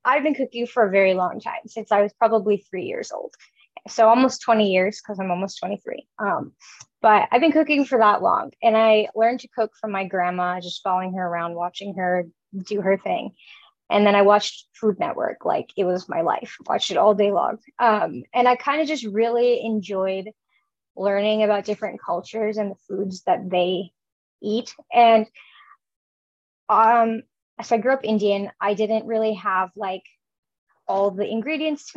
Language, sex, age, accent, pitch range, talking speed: English, female, 20-39, American, 200-250 Hz, 185 wpm